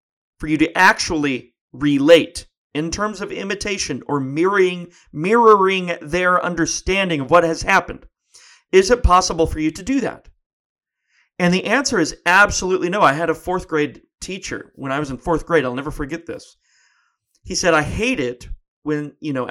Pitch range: 150-215 Hz